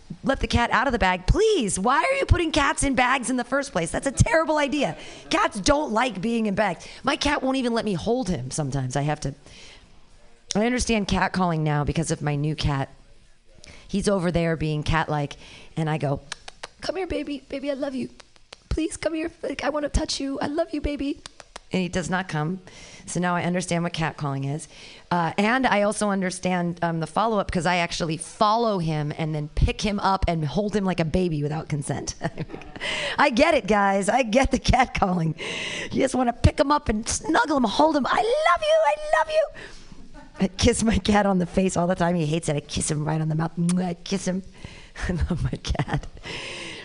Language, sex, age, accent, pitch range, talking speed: English, female, 40-59, American, 160-255 Hz, 215 wpm